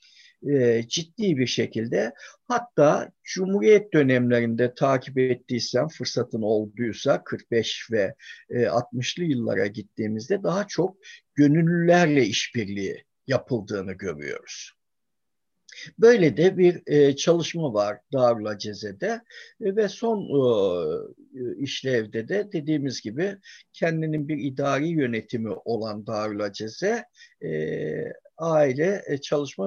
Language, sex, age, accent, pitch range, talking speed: Turkish, male, 60-79, native, 125-205 Hz, 100 wpm